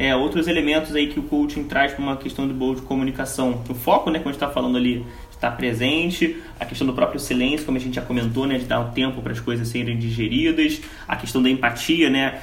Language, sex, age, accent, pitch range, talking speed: Portuguese, male, 20-39, Brazilian, 125-170 Hz, 235 wpm